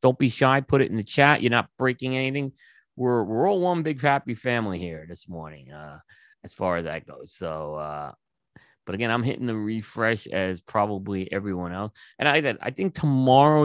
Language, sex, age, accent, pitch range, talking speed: English, male, 30-49, American, 105-140 Hz, 205 wpm